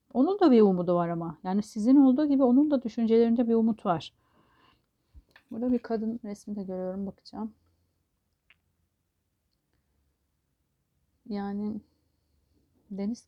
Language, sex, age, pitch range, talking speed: Turkish, female, 30-49, 175-225 Hz, 115 wpm